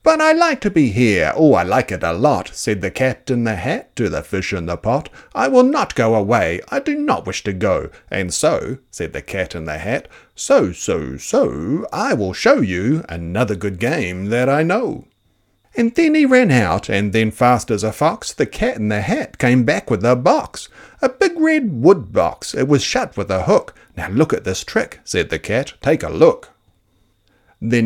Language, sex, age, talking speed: English, male, 60-79, 215 wpm